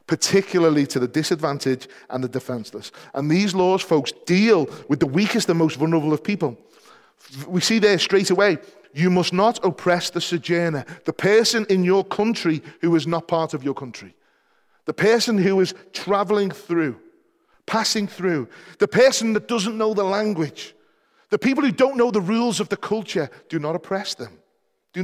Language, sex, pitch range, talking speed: English, male, 140-205 Hz, 175 wpm